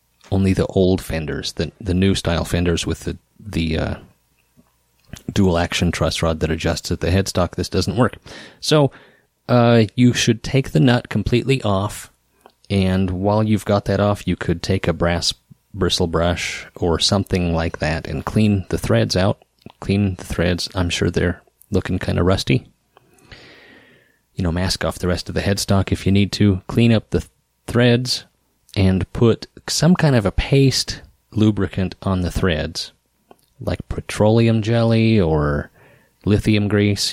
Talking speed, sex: 160 wpm, male